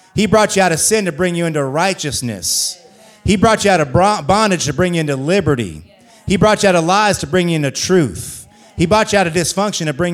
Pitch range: 150-195 Hz